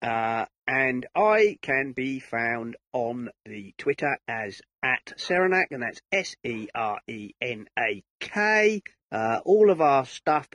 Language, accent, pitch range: English, British, 120-170 Hz